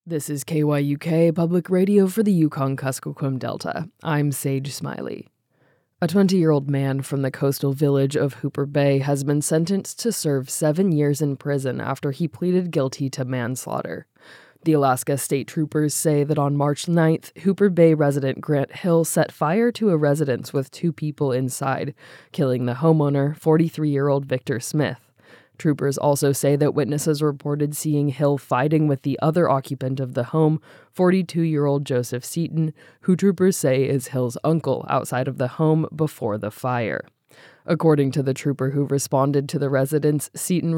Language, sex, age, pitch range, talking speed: English, female, 20-39, 135-160 Hz, 160 wpm